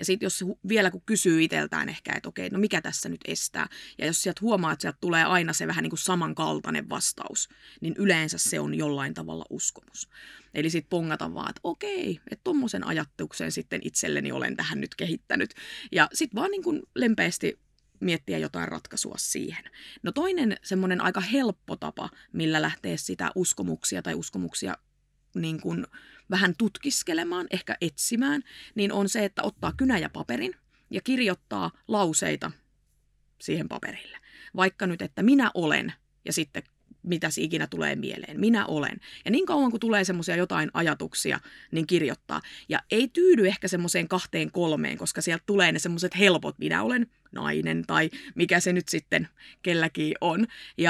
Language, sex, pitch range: Finnish, female, 165-220 Hz